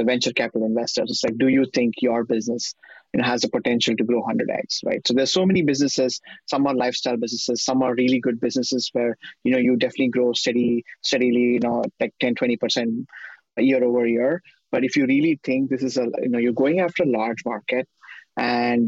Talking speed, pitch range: 215 wpm, 120-140 Hz